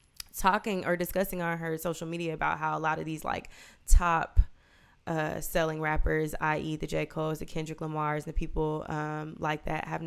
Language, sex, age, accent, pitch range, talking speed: English, female, 20-39, American, 155-180 Hz, 185 wpm